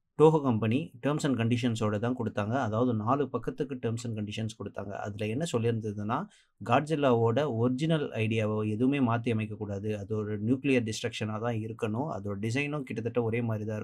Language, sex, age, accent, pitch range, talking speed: Tamil, male, 30-49, native, 110-130 Hz, 145 wpm